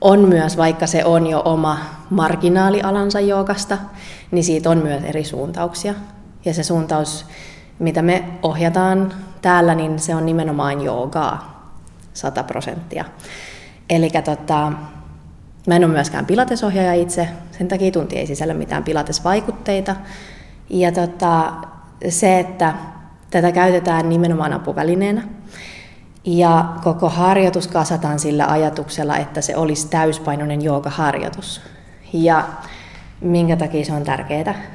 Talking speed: 120 wpm